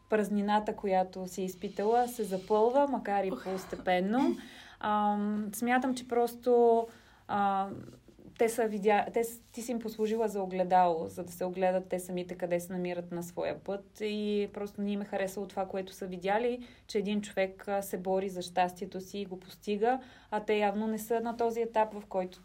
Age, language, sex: 20-39, Bulgarian, female